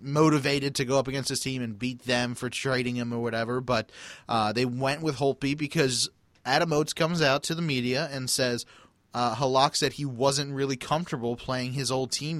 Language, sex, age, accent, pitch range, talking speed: English, male, 30-49, American, 120-150 Hz, 205 wpm